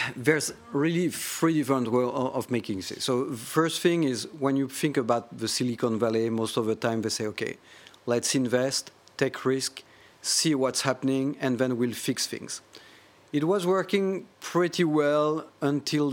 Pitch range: 120-145 Hz